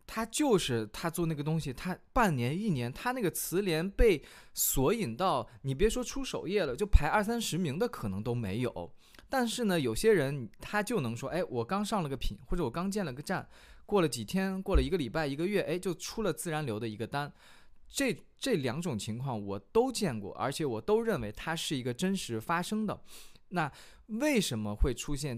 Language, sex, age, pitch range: Chinese, male, 20-39, 110-170 Hz